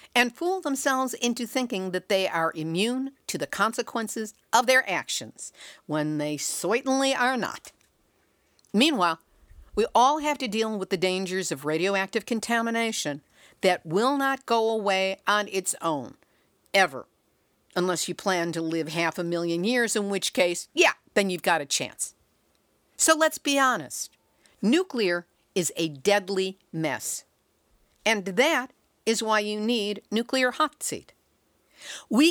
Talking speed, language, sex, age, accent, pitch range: 145 wpm, English, female, 60-79, American, 180-240 Hz